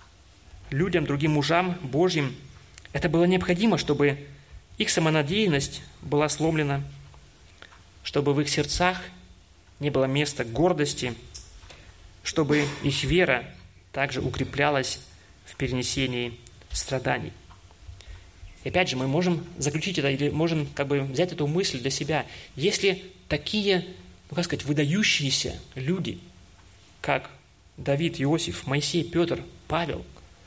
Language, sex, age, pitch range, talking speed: Russian, male, 20-39, 95-155 Hz, 105 wpm